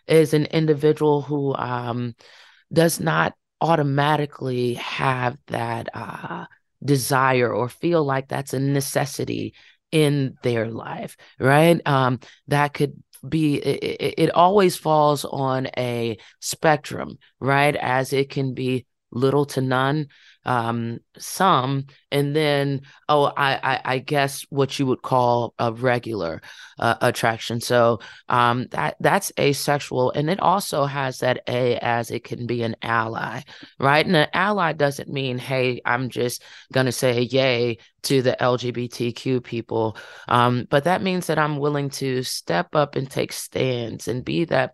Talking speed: 145 wpm